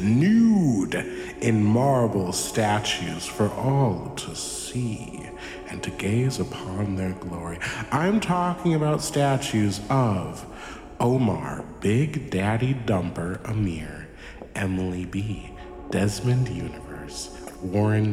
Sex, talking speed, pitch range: male, 95 wpm, 90-125 Hz